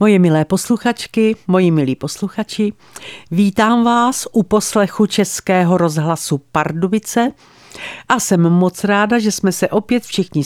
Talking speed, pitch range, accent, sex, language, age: 125 wpm, 160-220 Hz, native, female, Czech, 50-69